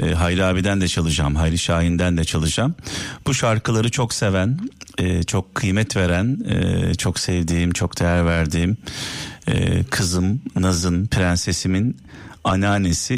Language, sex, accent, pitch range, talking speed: Turkish, male, native, 85-115 Hz, 125 wpm